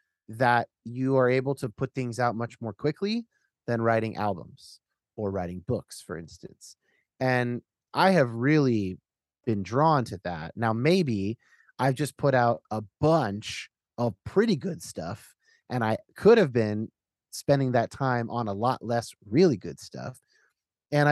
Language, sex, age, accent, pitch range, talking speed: English, male, 30-49, American, 110-150 Hz, 155 wpm